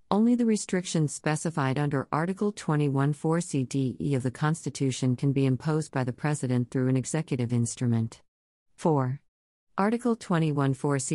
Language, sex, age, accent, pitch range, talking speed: English, female, 40-59, American, 130-155 Hz, 125 wpm